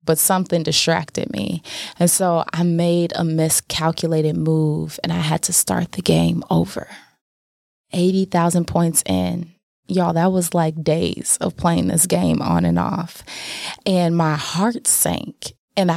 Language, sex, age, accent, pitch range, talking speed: English, female, 20-39, American, 160-185 Hz, 145 wpm